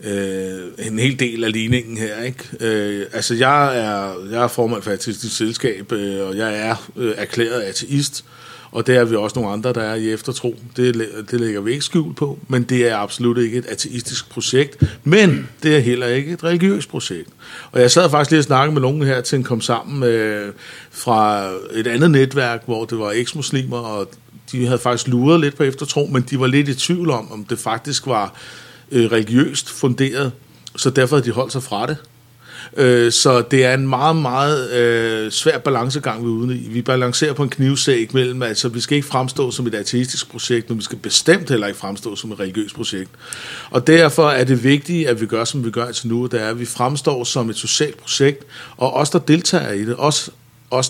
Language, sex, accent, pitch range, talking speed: Danish, male, native, 115-140 Hz, 205 wpm